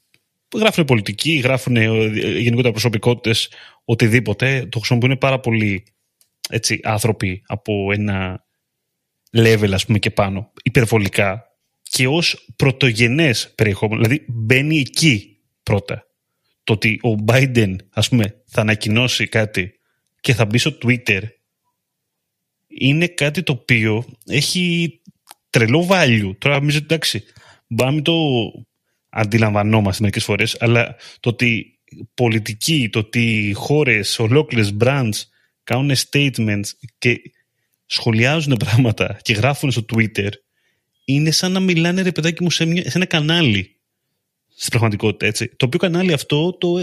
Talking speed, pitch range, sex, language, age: 120 wpm, 110-145 Hz, male, Greek, 30-49